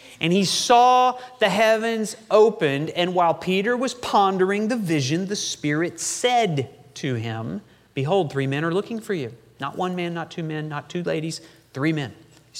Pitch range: 130-185 Hz